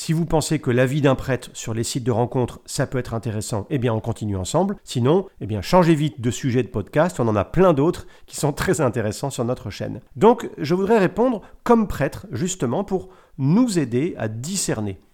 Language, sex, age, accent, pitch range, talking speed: French, male, 40-59, French, 125-185 Hz, 215 wpm